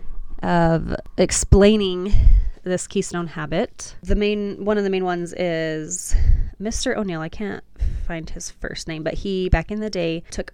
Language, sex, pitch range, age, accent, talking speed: English, female, 165-200 Hz, 20-39, American, 160 wpm